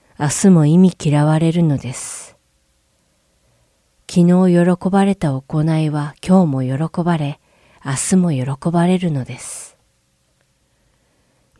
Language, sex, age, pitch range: Japanese, female, 40-59, 140-180 Hz